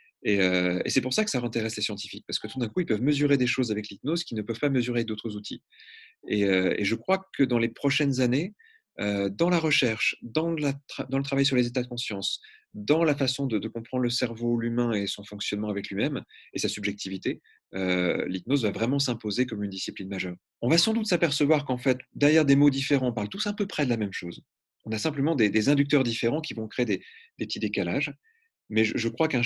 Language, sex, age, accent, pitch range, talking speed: French, male, 30-49, French, 100-135 Hz, 250 wpm